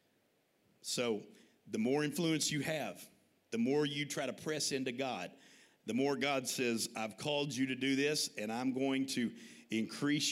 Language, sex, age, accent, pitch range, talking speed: English, male, 50-69, American, 125-180 Hz, 170 wpm